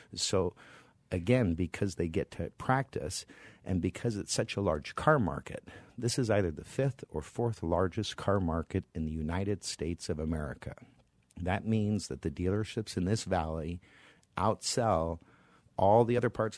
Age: 50-69